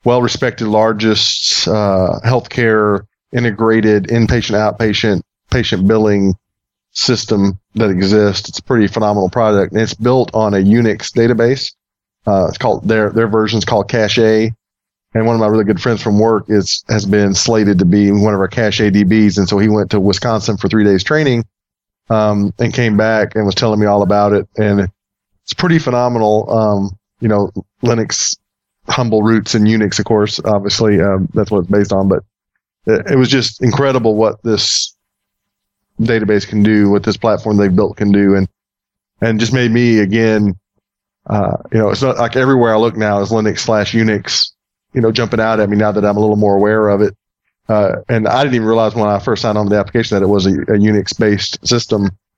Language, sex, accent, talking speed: English, male, American, 195 wpm